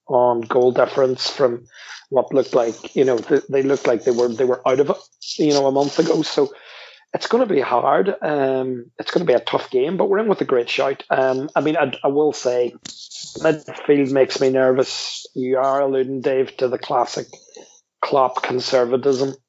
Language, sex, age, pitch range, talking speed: English, male, 40-59, 130-140 Hz, 200 wpm